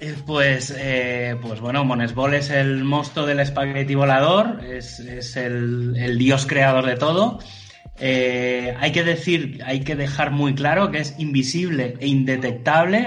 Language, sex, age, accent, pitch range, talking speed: Spanish, male, 30-49, Spanish, 125-150 Hz, 150 wpm